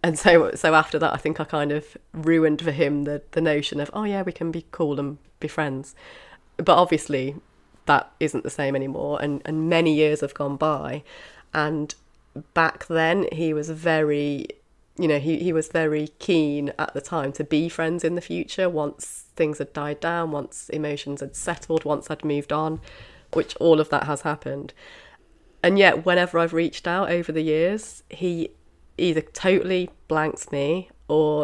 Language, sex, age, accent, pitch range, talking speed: English, female, 30-49, British, 150-180 Hz, 185 wpm